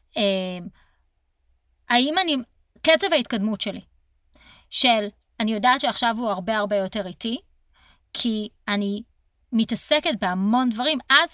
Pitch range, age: 195-245 Hz, 30-49